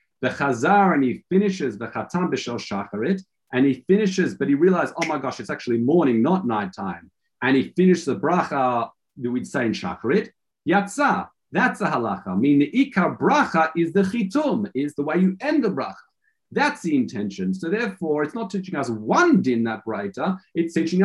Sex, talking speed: male, 185 wpm